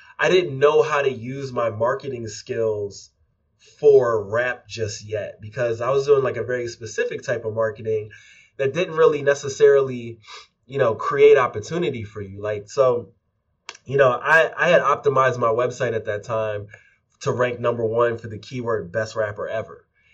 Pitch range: 110-140 Hz